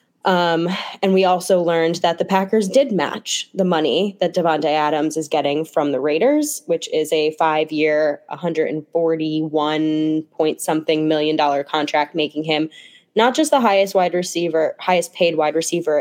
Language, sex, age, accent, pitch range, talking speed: English, female, 10-29, American, 155-195 Hz, 160 wpm